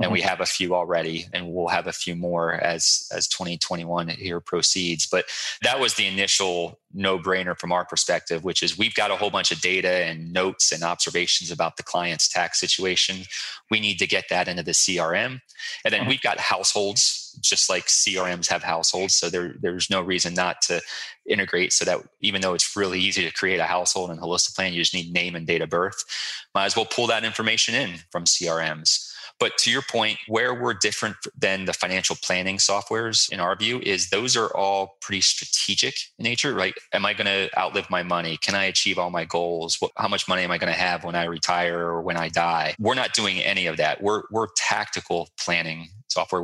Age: 20-39